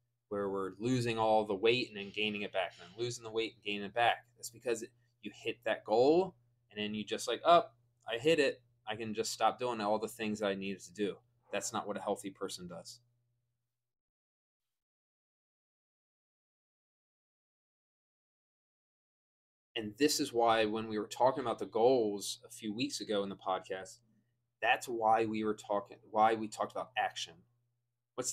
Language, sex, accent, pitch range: English, male, American, 105-120 Hz